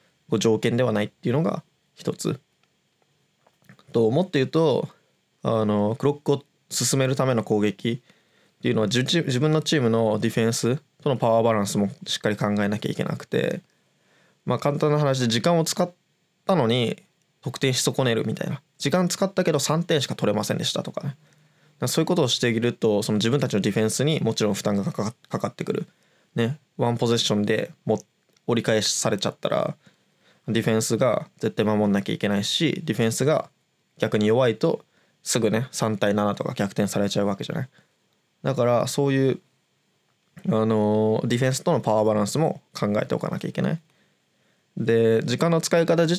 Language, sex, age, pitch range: Japanese, male, 20-39, 110-155 Hz